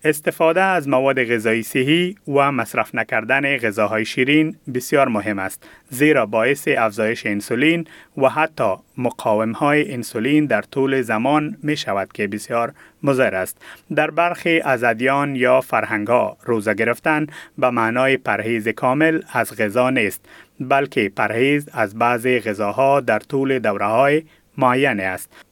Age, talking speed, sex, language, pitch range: 30-49, 130 wpm, male, Persian, 115-145 Hz